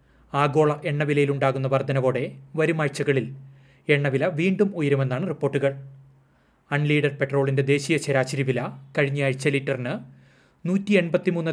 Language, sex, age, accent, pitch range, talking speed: Malayalam, male, 30-49, native, 135-150 Hz, 95 wpm